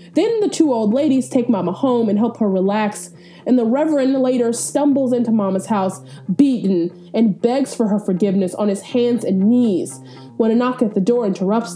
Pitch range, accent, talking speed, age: 195-265 Hz, American, 195 wpm, 20-39